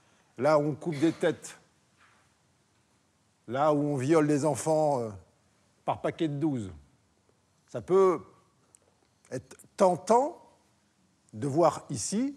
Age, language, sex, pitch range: 50-69, French, male, 145-190 Hz